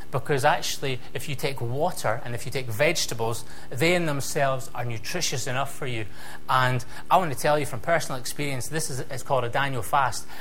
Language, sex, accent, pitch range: English, male, British, 115-155 Hz